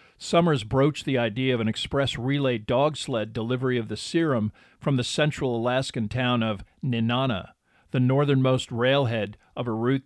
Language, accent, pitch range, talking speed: English, American, 115-140 Hz, 160 wpm